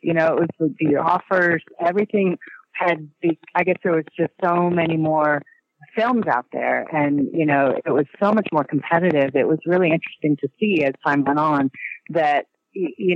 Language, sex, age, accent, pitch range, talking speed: English, female, 40-59, American, 145-180 Hz, 185 wpm